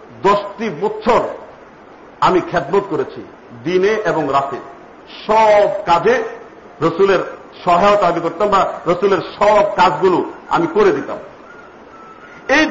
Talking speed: 105 wpm